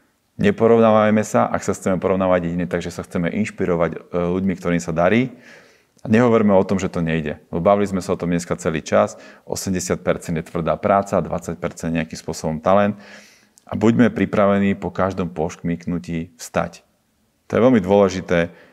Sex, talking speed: male, 160 wpm